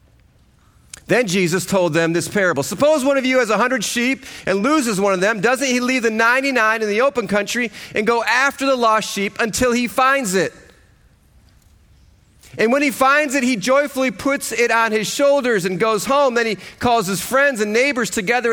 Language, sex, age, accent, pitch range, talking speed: English, male, 40-59, American, 205-260 Hz, 195 wpm